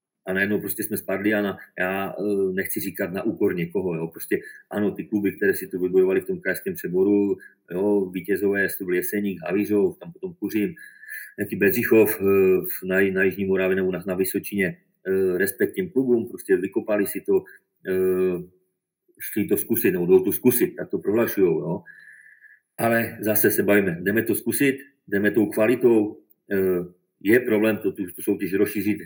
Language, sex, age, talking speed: Czech, male, 40-59, 155 wpm